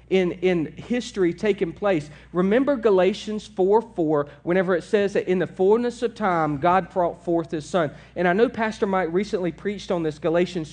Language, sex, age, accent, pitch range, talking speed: English, male, 40-59, American, 150-205 Hz, 185 wpm